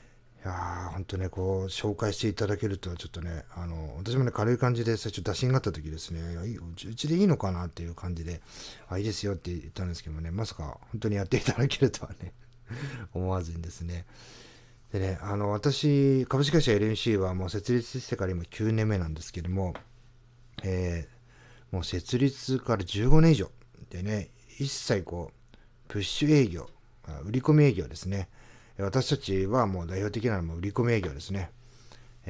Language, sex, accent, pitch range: Japanese, male, native, 90-120 Hz